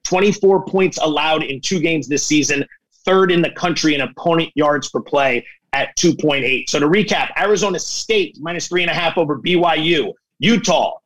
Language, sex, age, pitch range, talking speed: English, male, 30-49, 165-200 Hz, 175 wpm